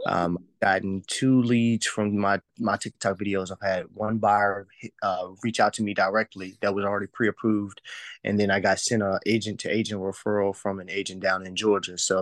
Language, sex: English, male